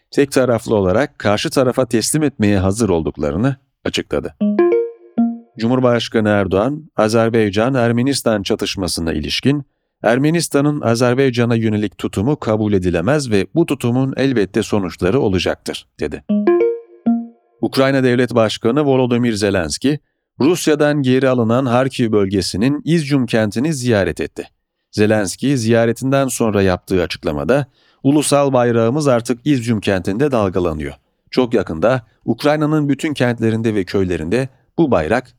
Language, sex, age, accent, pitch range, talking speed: Turkish, male, 40-59, native, 105-140 Hz, 105 wpm